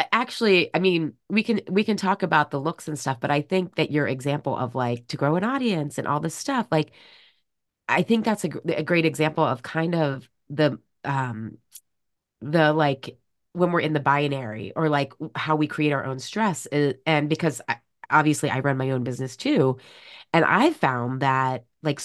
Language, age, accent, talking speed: English, 30-49, American, 195 wpm